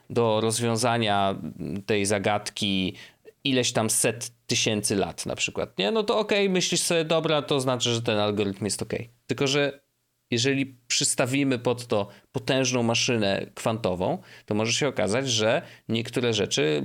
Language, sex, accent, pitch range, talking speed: Polish, male, native, 105-135 Hz, 145 wpm